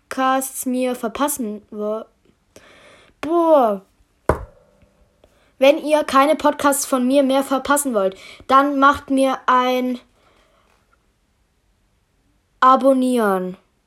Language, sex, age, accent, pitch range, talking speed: German, female, 20-39, German, 250-290 Hz, 80 wpm